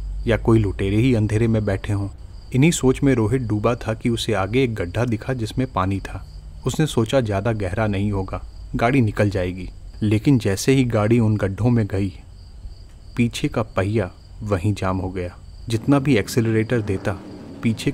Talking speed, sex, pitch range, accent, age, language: 175 wpm, male, 95-120 Hz, native, 30-49, Hindi